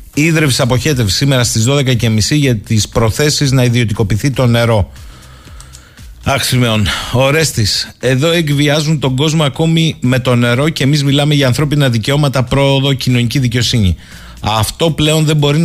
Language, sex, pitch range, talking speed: Greek, male, 115-155 Hz, 135 wpm